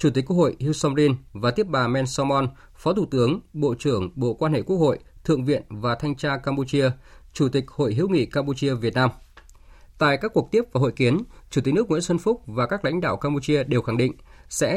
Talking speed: 230 wpm